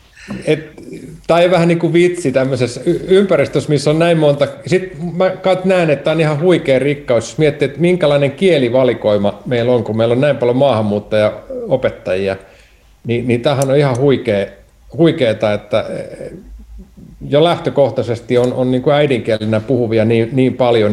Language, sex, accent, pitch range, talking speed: Finnish, male, native, 110-145 Hz, 145 wpm